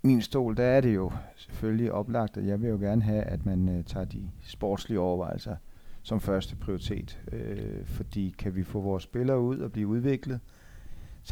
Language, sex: Danish, male